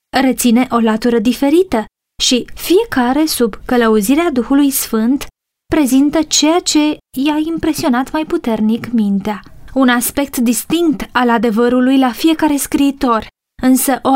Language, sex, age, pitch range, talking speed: Romanian, female, 20-39, 230-285 Hz, 120 wpm